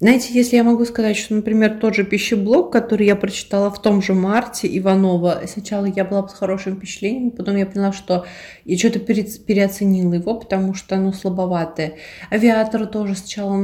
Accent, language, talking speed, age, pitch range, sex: native, Russian, 170 wpm, 20-39, 175-205 Hz, female